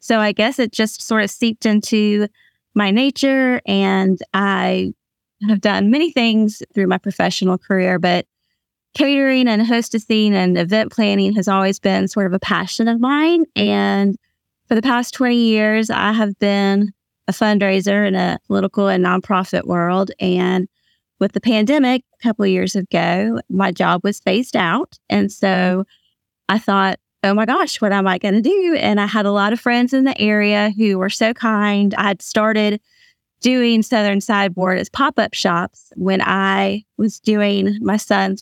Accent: American